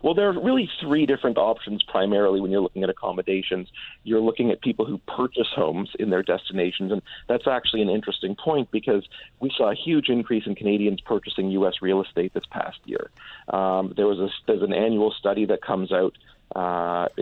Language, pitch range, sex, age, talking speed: English, 95-110 Hz, male, 40-59, 190 wpm